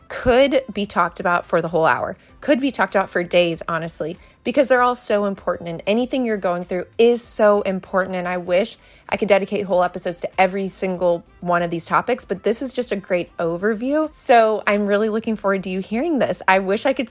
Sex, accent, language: female, American, English